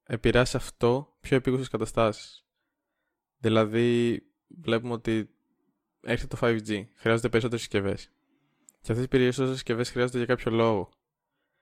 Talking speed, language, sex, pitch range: 125 wpm, Greek, male, 105-120 Hz